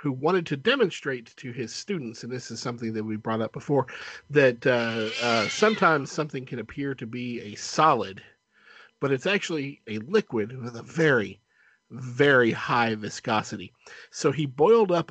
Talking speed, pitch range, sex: 165 wpm, 115-160 Hz, male